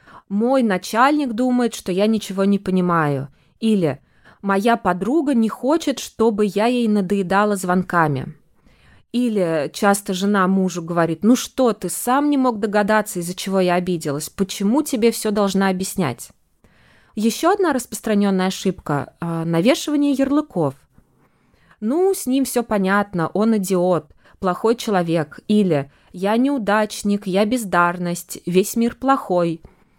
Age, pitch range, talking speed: 20-39, 185-240 Hz, 125 wpm